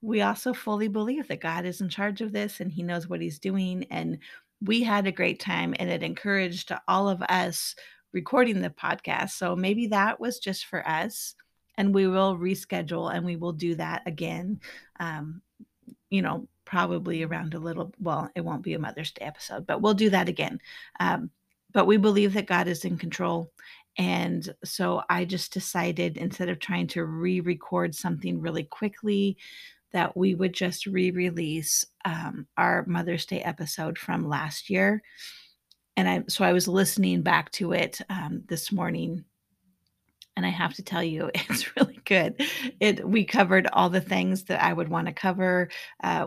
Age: 30-49